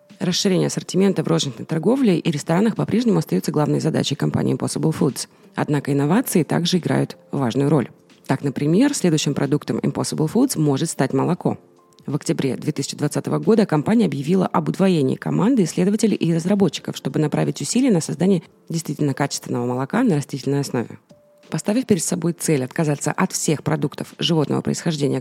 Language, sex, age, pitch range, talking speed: Russian, female, 30-49, 145-195 Hz, 150 wpm